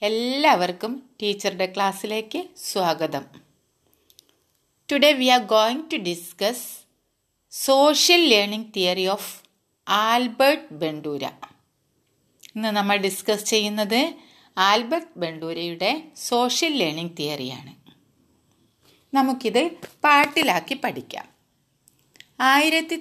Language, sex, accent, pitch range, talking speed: Malayalam, female, native, 200-280 Hz, 75 wpm